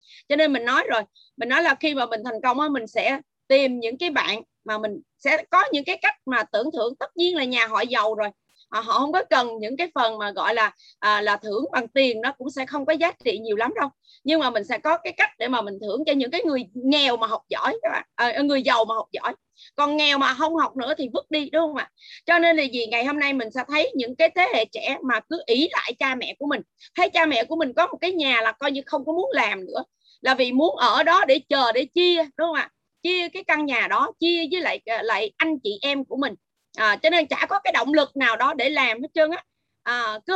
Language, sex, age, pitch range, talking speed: Vietnamese, female, 20-39, 240-325 Hz, 275 wpm